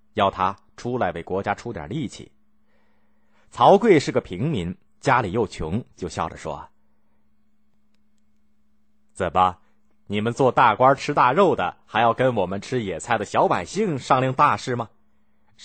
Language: Chinese